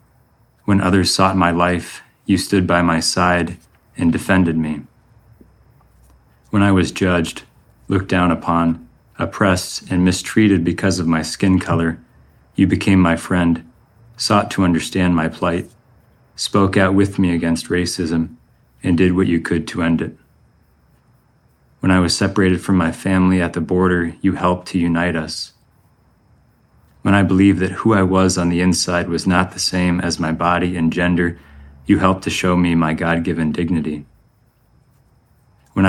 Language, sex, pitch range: English, male, 85-100 Hz